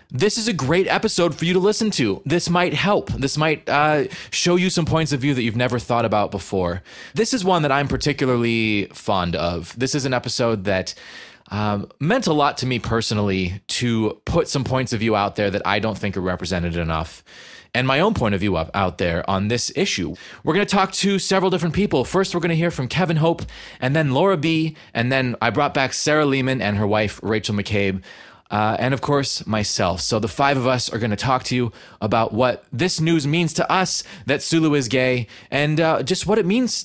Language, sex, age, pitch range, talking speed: English, male, 20-39, 110-160 Hz, 225 wpm